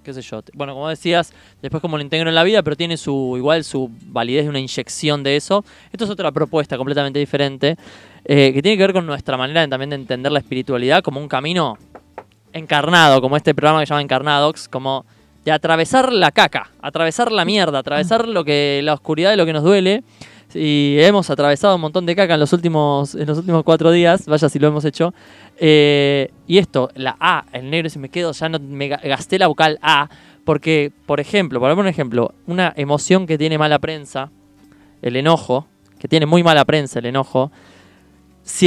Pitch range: 135-170 Hz